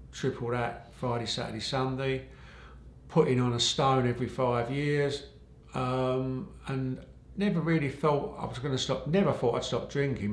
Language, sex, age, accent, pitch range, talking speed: English, male, 50-69, British, 110-130 Hz, 155 wpm